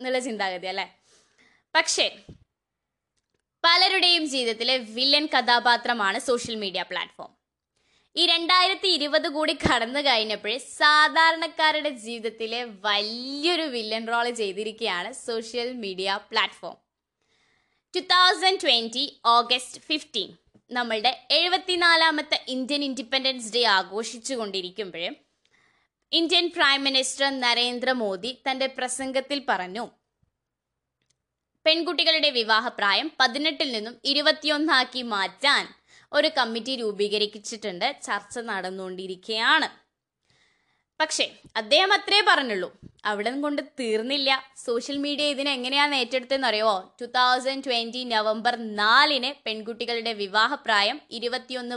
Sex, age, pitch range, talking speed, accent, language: female, 20-39, 225-290 Hz, 85 wpm, native, Malayalam